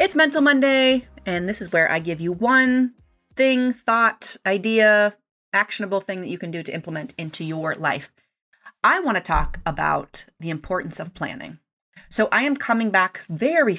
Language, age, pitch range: English, 30-49, 160-210 Hz